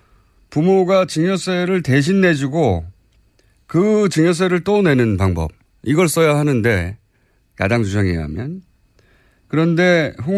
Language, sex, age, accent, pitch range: Korean, male, 30-49, native, 105-170 Hz